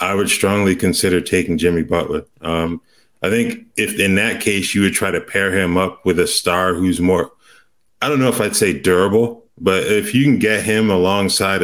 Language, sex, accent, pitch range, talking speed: English, male, American, 90-105 Hz, 205 wpm